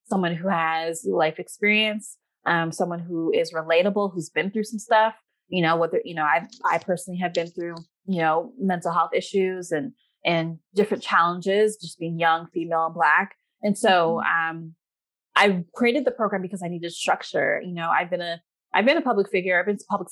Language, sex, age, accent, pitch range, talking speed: English, female, 20-39, American, 165-200 Hz, 195 wpm